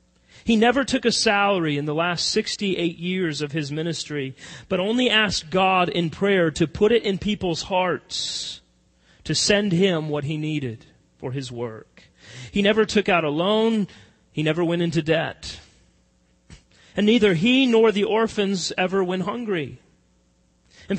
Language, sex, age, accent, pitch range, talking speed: English, male, 30-49, American, 130-190 Hz, 155 wpm